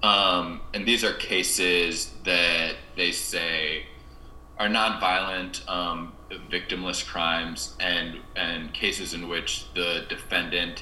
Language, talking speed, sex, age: English, 110 wpm, male, 20-39